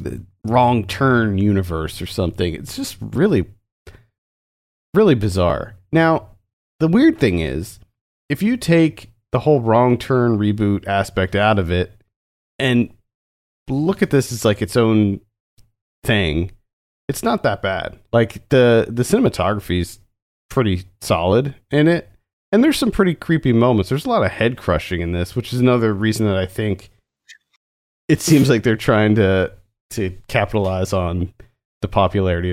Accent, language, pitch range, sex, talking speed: American, English, 90-115 Hz, male, 150 wpm